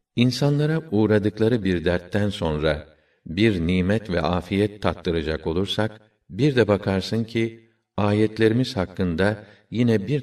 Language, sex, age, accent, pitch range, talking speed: Turkish, male, 50-69, native, 85-105 Hz, 110 wpm